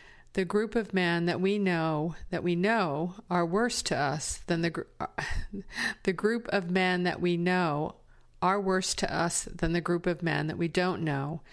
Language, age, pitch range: English, 50-69, 170-195 Hz